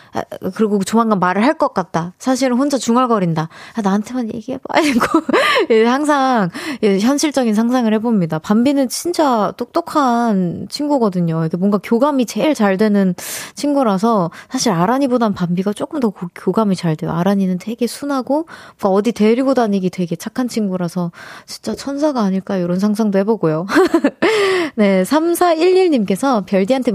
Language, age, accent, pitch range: Korean, 20-39, native, 200-270 Hz